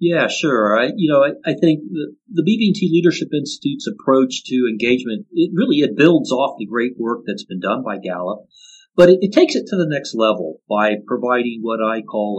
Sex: male